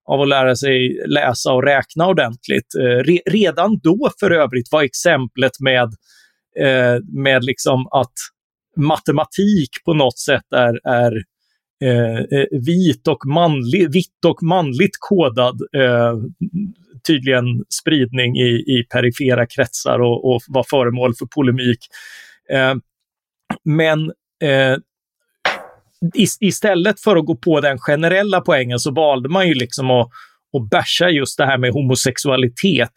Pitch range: 125-160 Hz